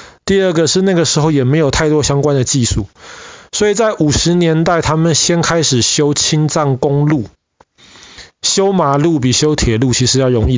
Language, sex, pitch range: Chinese, male, 125-165 Hz